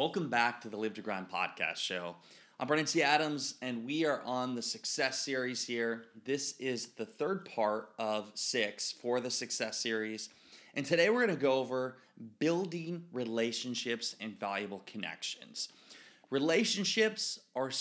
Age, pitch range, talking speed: 20-39, 115-145 Hz, 155 wpm